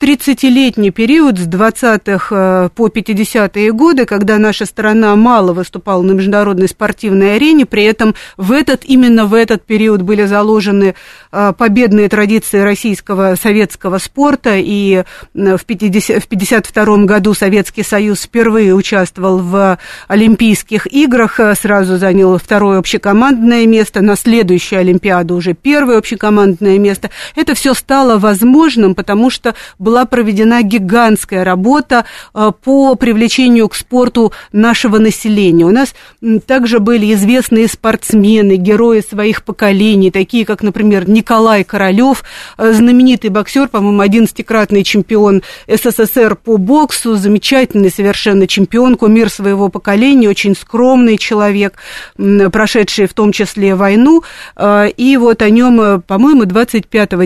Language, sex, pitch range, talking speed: Russian, female, 200-230 Hz, 125 wpm